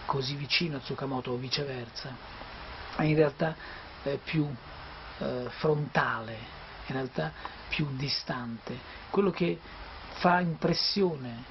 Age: 50-69